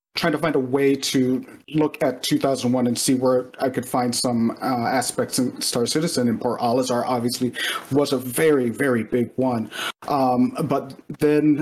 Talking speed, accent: 170 wpm, American